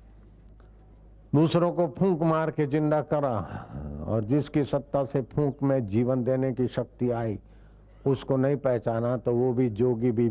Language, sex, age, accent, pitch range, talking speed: Hindi, male, 60-79, native, 105-135 Hz, 150 wpm